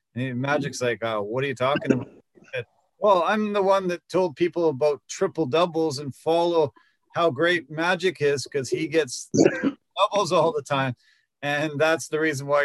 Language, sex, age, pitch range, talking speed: English, male, 40-59, 145-195 Hz, 180 wpm